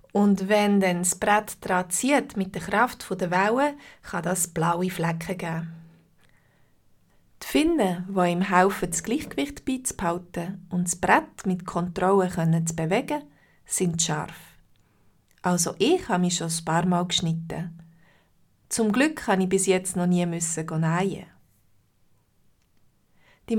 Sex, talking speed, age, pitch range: female, 135 wpm, 30-49, 170-205 Hz